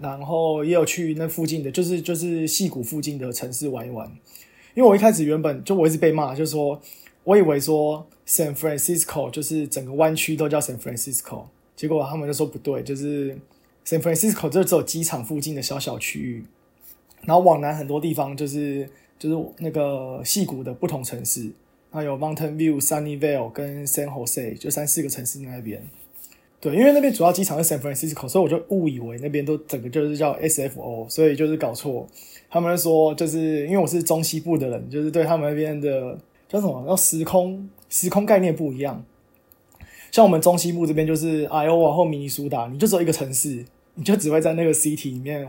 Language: Chinese